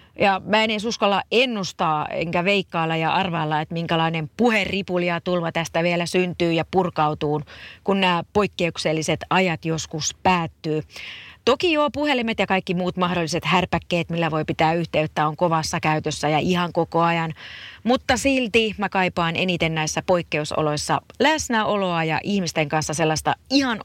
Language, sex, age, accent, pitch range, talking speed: Finnish, female, 30-49, native, 155-195 Hz, 140 wpm